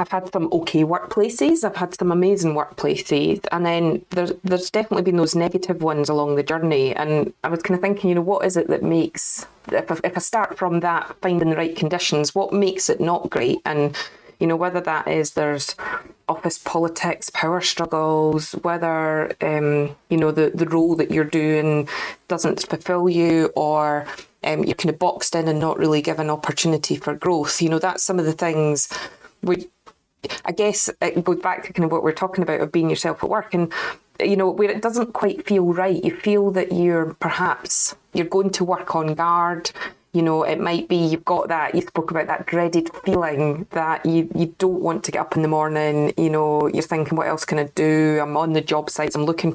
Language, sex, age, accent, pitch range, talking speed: English, female, 30-49, British, 155-180 Hz, 210 wpm